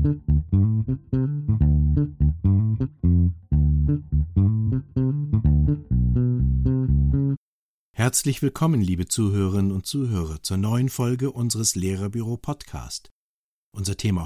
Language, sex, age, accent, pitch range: German, male, 50-69, German, 95-130 Hz